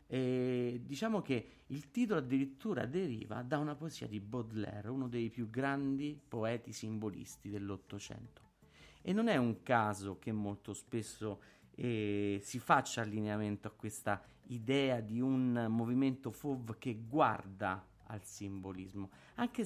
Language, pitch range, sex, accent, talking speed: Italian, 105-140 Hz, male, native, 130 wpm